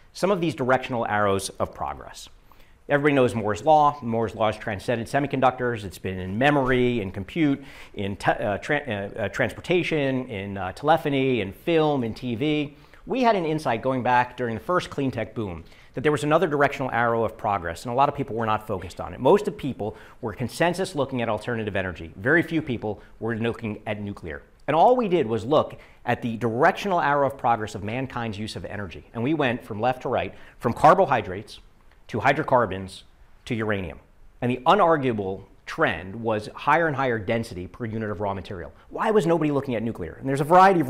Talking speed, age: 200 wpm, 50-69